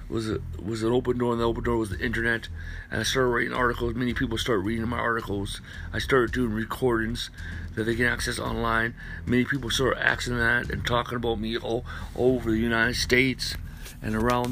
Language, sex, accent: English, male, American